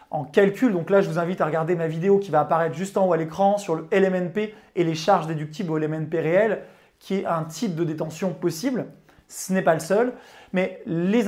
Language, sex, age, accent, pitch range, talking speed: French, male, 20-39, French, 165-215 Hz, 230 wpm